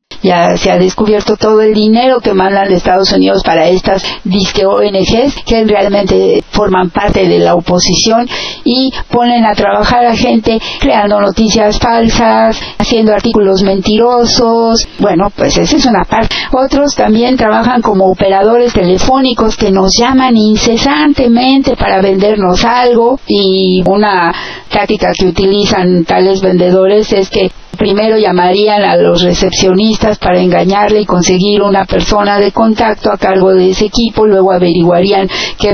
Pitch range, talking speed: 185-225 Hz, 140 wpm